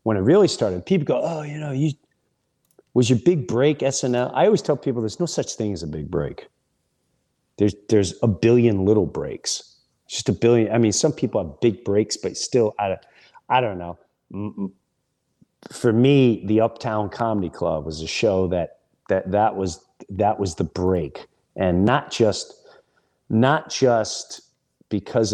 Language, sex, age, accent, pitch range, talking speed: English, male, 40-59, American, 100-125 Hz, 170 wpm